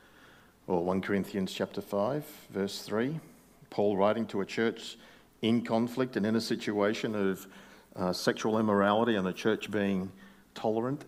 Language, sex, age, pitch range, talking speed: English, male, 50-69, 95-115 Hz, 145 wpm